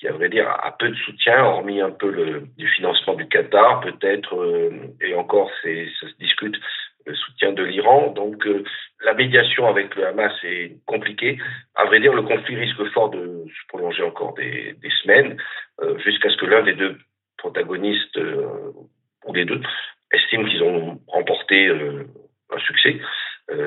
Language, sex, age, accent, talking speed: French, male, 40-59, French, 170 wpm